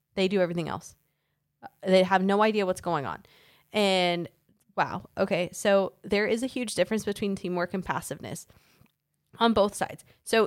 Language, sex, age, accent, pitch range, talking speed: English, female, 20-39, American, 160-190 Hz, 160 wpm